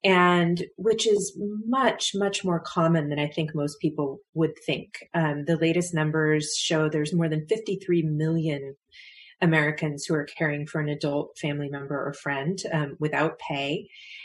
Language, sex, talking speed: English, female, 160 wpm